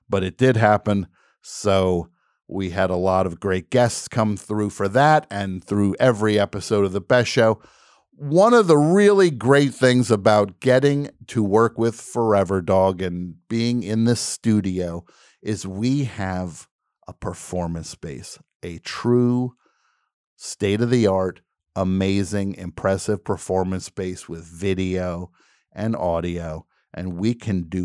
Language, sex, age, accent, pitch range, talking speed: English, male, 50-69, American, 90-120 Hz, 135 wpm